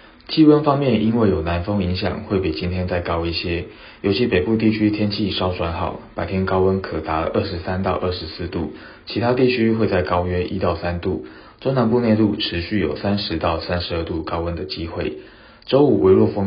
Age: 20-39